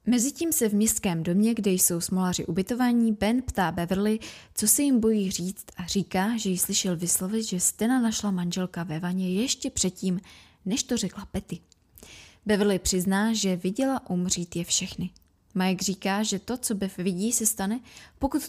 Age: 20-39